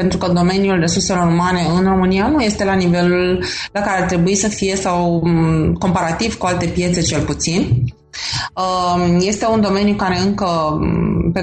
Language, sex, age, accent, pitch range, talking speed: Romanian, female, 20-39, native, 165-195 Hz, 155 wpm